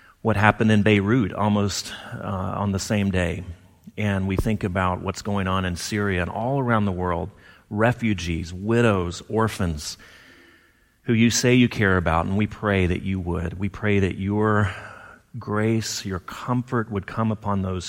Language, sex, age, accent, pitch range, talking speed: English, male, 40-59, American, 90-110 Hz, 170 wpm